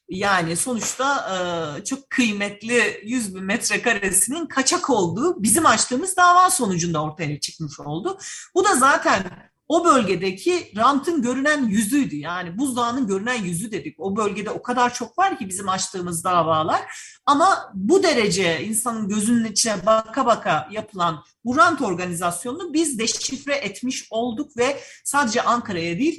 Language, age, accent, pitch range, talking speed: Turkish, 40-59, native, 175-255 Hz, 135 wpm